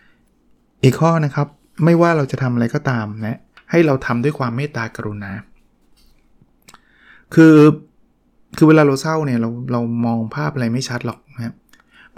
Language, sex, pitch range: Thai, male, 120-155 Hz